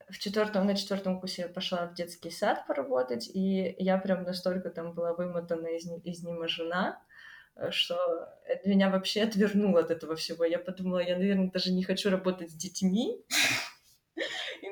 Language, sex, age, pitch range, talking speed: Russian, female, 20-39, 180-205 Hz, 160 wpm